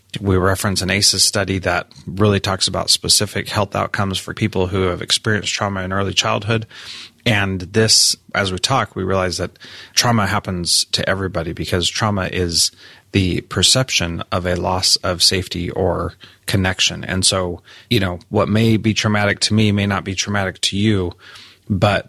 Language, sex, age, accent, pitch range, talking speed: English, male, 30-49, American, 90-105 Hz, 170 wpm